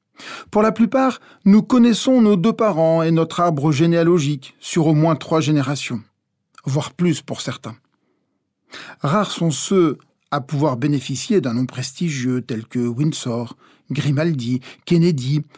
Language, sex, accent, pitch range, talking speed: French, male, French, 140-175 Hz, 135 wpm